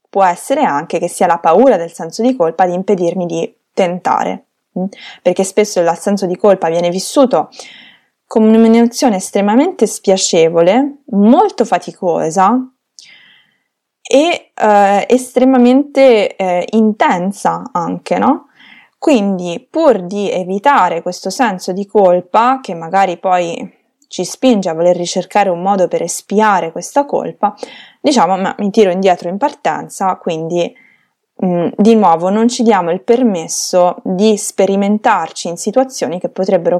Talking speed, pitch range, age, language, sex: 130 wpm, 180-235 Hz, 20-39, Italian, female